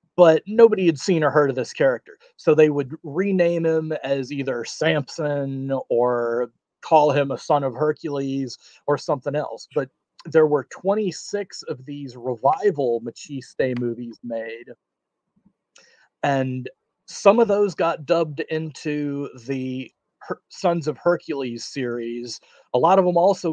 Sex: male